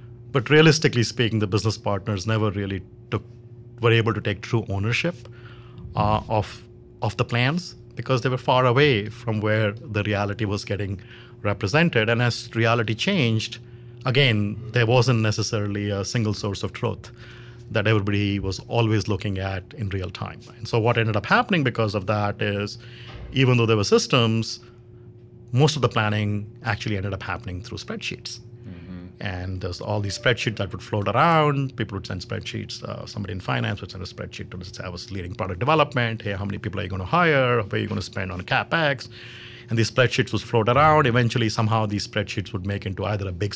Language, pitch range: English, 105-120 Hz